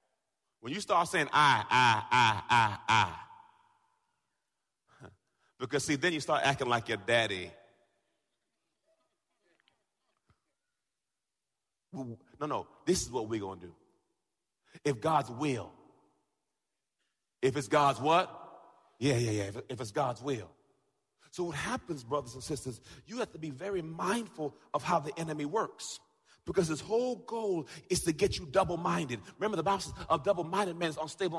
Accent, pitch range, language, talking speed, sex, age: American, 155-230 Hz, English, 145 wpm, male, 30-49